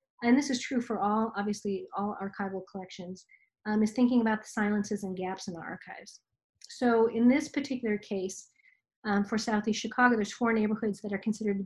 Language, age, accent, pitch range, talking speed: English, 40-59, American, 195-230 Hz, 190 wpm